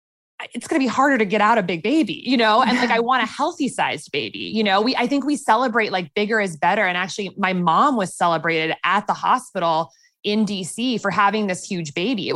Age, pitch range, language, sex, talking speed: 20-39, 170-230 Hz, English, female, 240 wpm